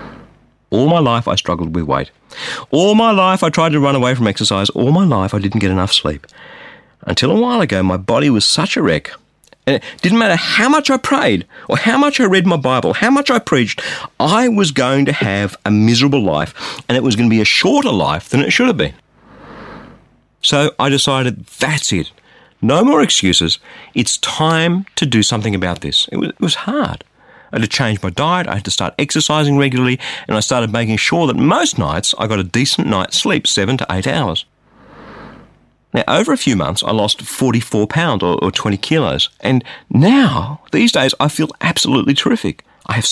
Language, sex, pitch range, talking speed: English, male, 110-170 Hz, 200 wpm